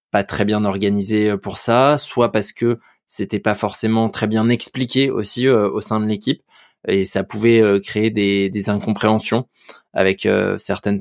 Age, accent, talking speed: 20-39, French, 160 wpm